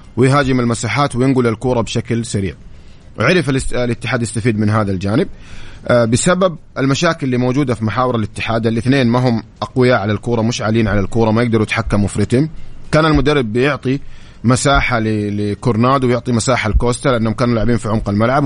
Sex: male